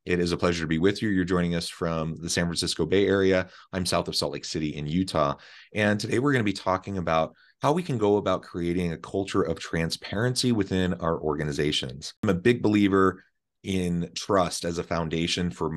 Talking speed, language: 215 wpm, English